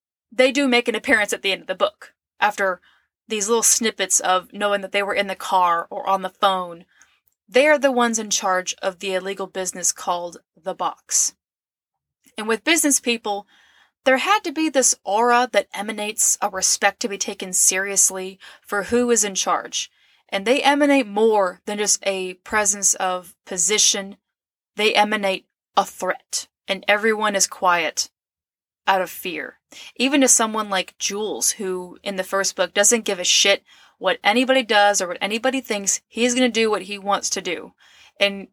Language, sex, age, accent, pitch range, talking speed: English, female, 20-39, American, 190-230 Hz, 180 wpm